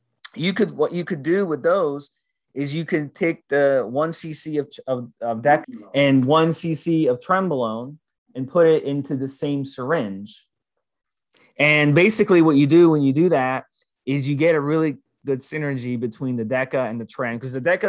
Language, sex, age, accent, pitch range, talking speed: English, male, 30-49, American, 130-165 Hz, 185 wpm